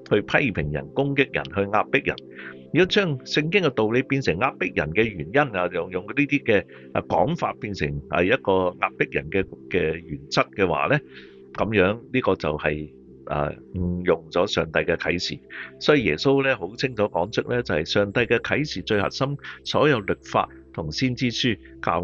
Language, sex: Chinese, male